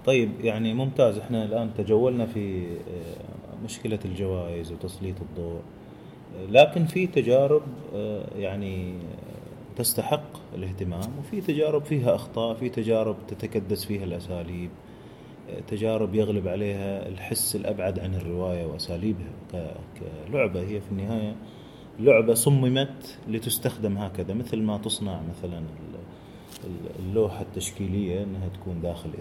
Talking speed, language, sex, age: 105 wpm, Arabic, male, 30-49